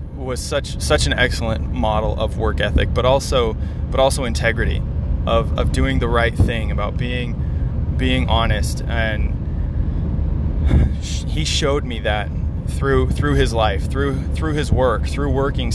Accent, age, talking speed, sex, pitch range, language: American, 20-39, 150 wpm, male, 65-80 Hz, English